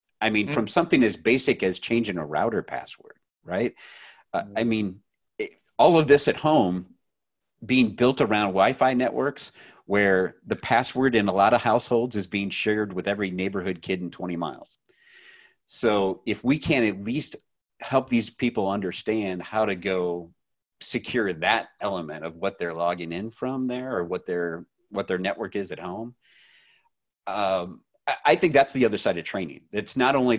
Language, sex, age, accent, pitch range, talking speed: English, male, 40-59, American, 90-120 Hz, 175 wpm